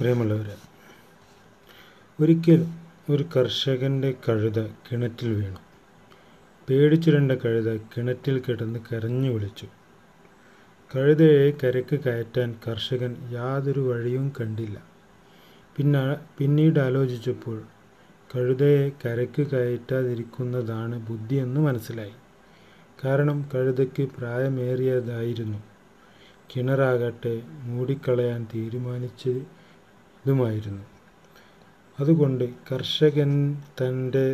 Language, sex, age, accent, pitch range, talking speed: Malayalam, male, 30-49, native, 115-135 Hz, 65 wpm